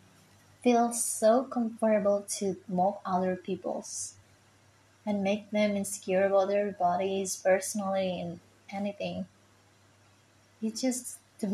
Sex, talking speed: female, 105 wpm